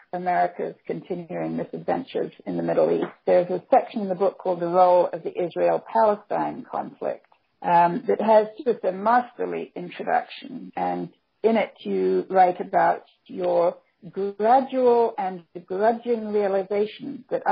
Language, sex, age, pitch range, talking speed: English, female, 50-69, 185-235 Hz, 135 wpm